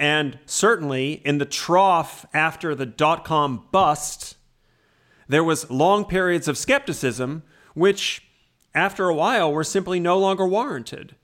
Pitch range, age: 130-165 Hz, 40-59